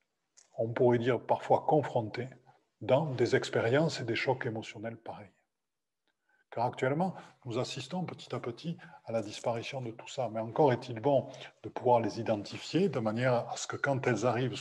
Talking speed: 170 wpm